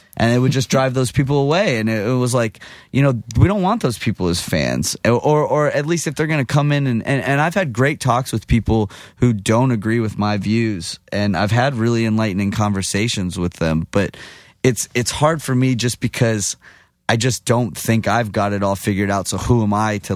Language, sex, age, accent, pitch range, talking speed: English, male, 20-39, American, 100-130 Hz, 230 wpm